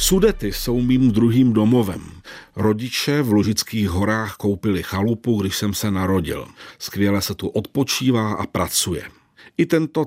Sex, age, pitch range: male, 50-69, 100-135 Hz